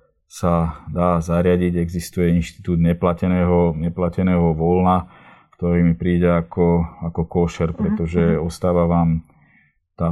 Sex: male